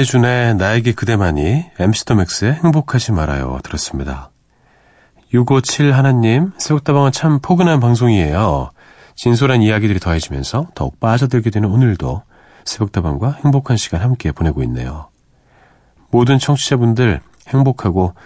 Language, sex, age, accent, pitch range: Korean, male, 40-59, native, 80-115 Hz